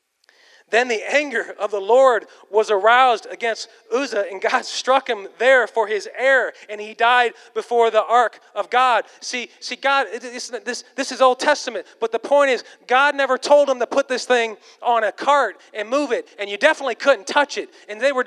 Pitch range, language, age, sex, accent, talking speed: 235-315 Hz, English, 30-49, male, American, 205 wpm